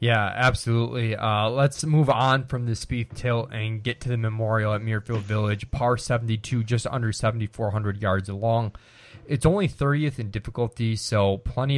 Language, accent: English, American